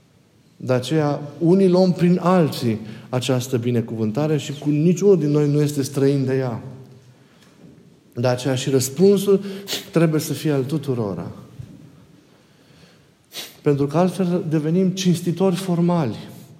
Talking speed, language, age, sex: 120 wpm, Romanian, 50-69, male